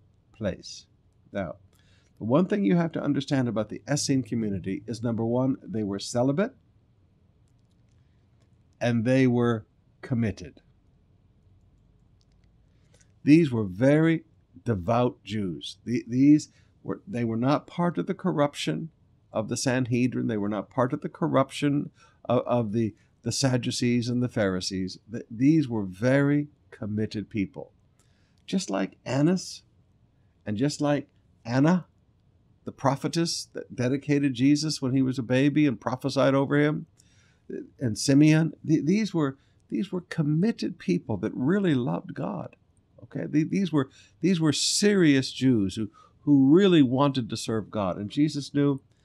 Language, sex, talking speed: English, male, 140 wpm